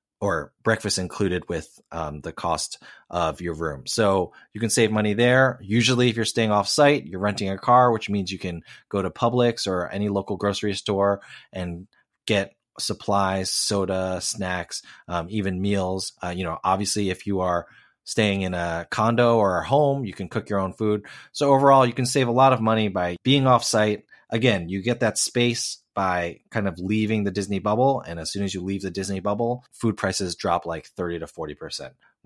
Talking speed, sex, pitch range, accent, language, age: 200 wpm, male, 90-115 Hz, American, English, 30-49